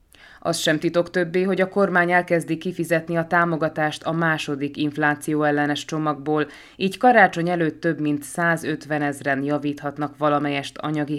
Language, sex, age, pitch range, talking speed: Hungarian, female, 20-39, 145-165 Hz, 135 wpm